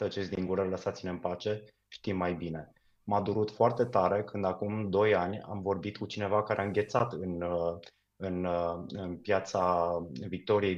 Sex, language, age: male, English, 20-39